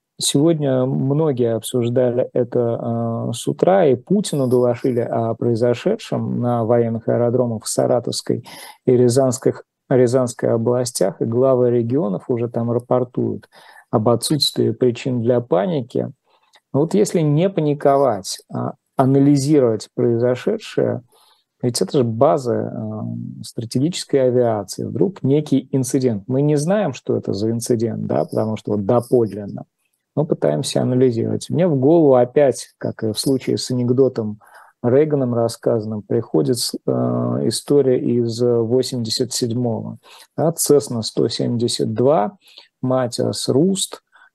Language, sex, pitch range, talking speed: Russian, male, 115-135 Hz, 110 wpm